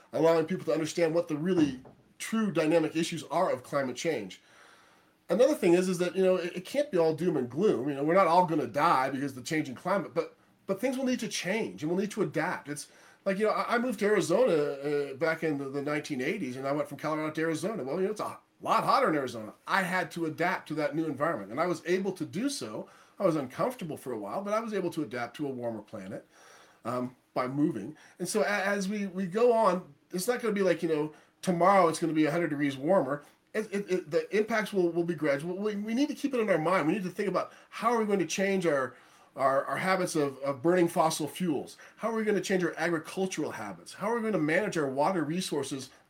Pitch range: 150-195 Hz